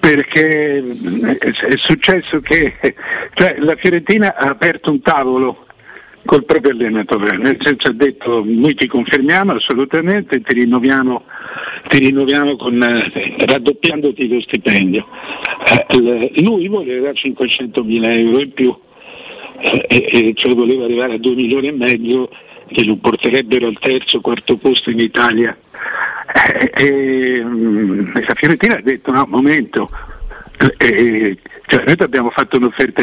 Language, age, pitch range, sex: Italian, 60-79, 120-145 Hz, male